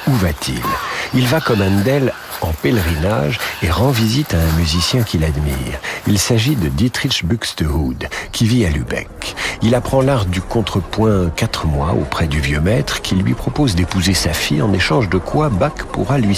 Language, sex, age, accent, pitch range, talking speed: French, male, 50-69, French, 85-120 Hz, 180 wpm